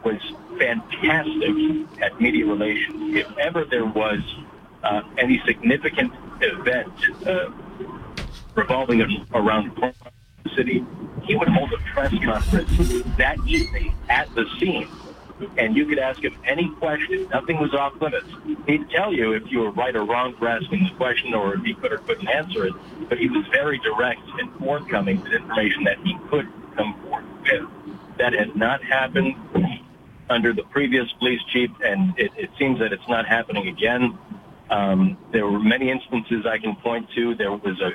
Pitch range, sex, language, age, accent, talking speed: 110-150 Hz, male, English, 50-69, American, 170 wpm